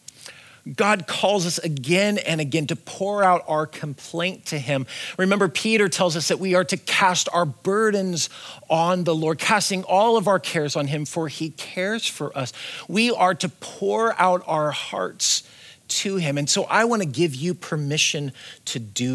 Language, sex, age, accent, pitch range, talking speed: English, male, 40-59, American, 125-170 Hz, 180 wpm